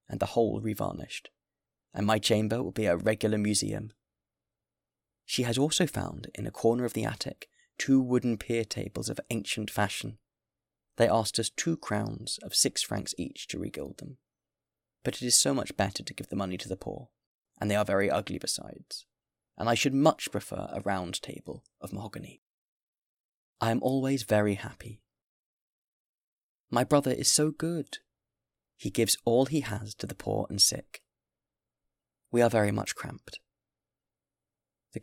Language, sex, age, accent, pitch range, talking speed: English, male, 20-39, British, 105-135 Hz, 165 wpm